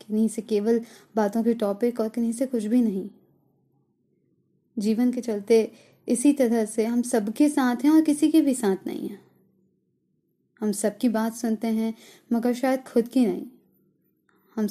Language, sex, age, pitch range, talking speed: Hindi, female, 20-39, 210-250 Hz, 165 wpm